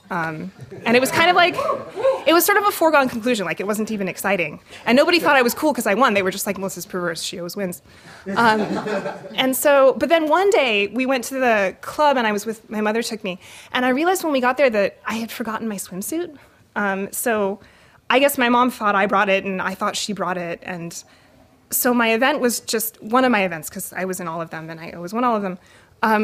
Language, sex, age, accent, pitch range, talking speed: English, female, 20-39, American, 190-255 Hz, 255 wpm